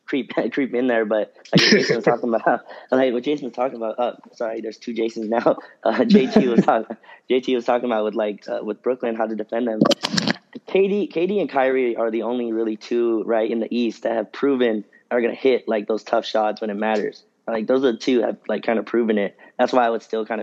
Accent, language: American, English